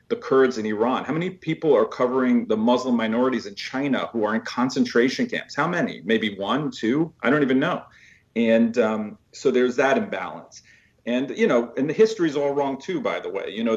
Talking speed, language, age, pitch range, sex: 215 wpm, English, 40-59, 115-145 Hz, male